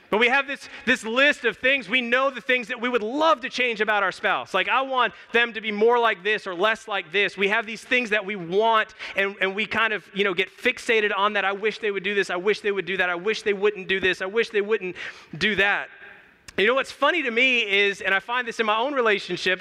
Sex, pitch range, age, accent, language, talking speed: male, 160-215 Hz, 30-49, American, English, 280 wpm